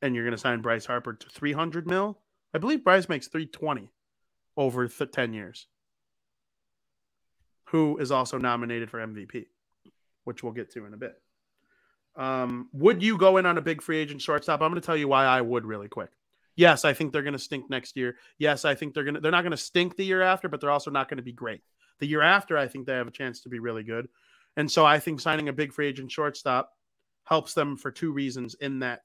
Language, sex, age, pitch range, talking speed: English, male, 30-49, 125-160 Hz, 230 wpm